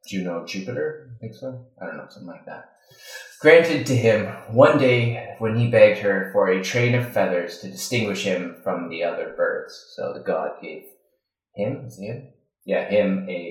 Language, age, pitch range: English, 30-49, 95-135 Hz